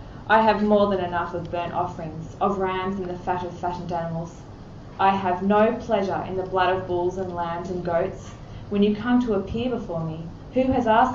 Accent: Australian